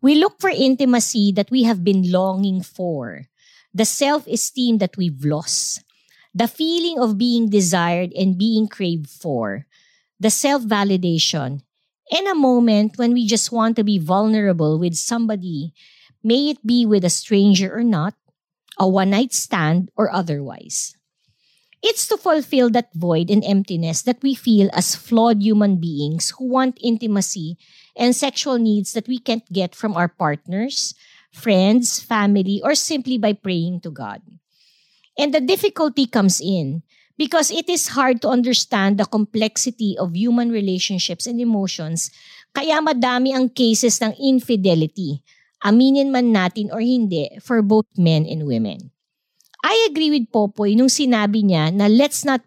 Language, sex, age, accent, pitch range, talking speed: English, female, 50-69, Filipino, 180-250 Hz, 150 wpm